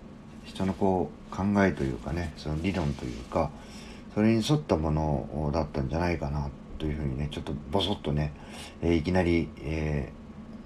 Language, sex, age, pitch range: Japanese, male, 40-59, 75-90 Hz